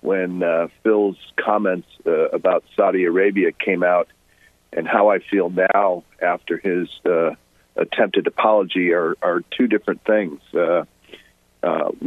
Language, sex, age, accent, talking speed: English, male, 50-69, American, 135 wpm